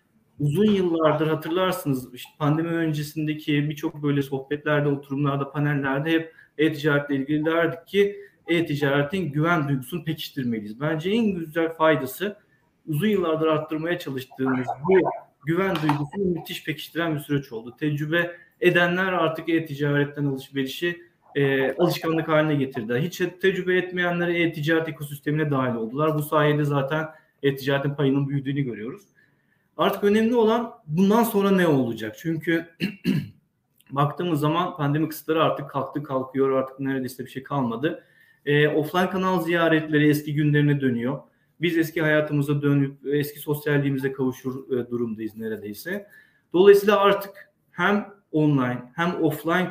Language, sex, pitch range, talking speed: Turkish, male, 140-170 Hz, 120 wpm